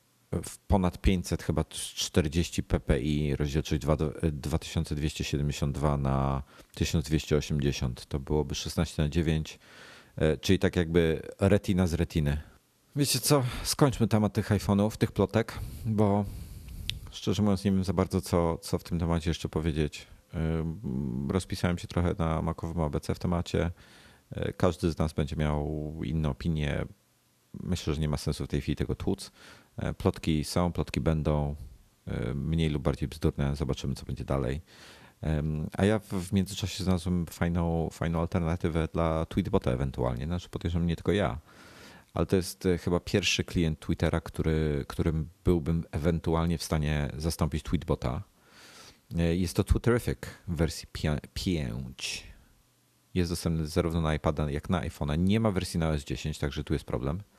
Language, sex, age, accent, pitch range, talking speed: Polish, male, 40-59, native, 75-95 Hz, 140 wpm